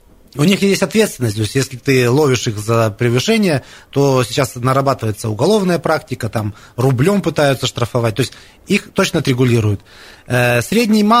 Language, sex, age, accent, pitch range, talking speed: Russian, male, 20-39, native, 120-160 Hz, 145 wpm